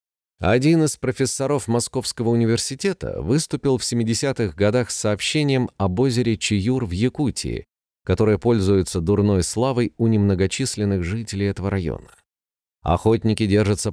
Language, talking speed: Russian, 115 wpm